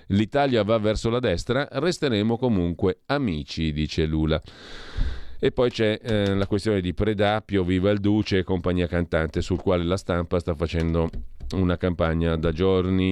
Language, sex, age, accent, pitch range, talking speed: Italian, male, 40-59, native, 80-105 Hz, 150 wpm